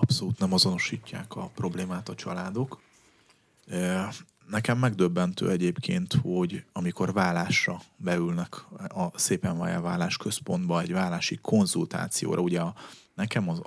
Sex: male